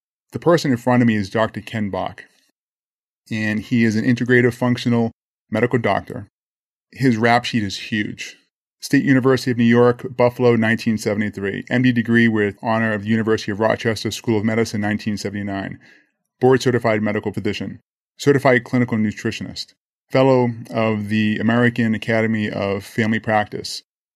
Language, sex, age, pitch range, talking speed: English, male, 20-39, 105-125 Hz, 145 wpm